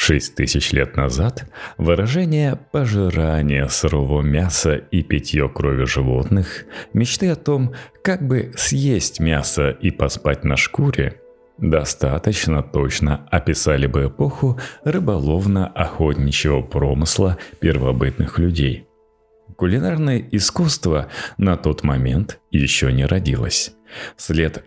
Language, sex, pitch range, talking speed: Russian, male, 70-110 Hz, 100 wpm